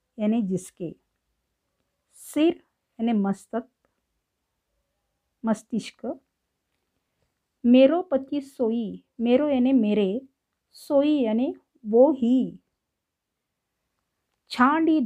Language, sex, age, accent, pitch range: Marathi, female, 50-69, native, 205-270 Hz